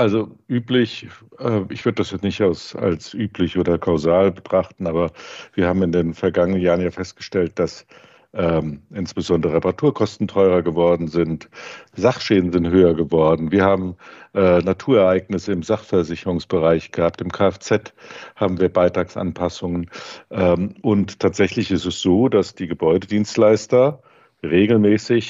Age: 50-69